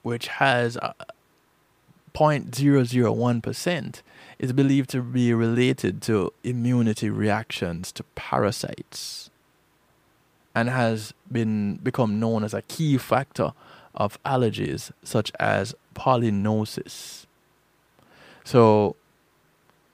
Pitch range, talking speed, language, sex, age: 110-130 Hz, 85 wpm, English, male, 20-39